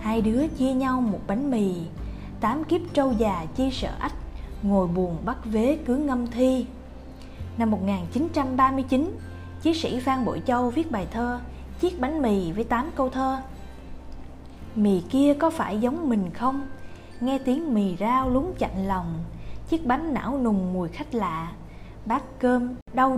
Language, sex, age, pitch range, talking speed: Vietnamese, female, 20-39, 195-270 Hz, 160 wpm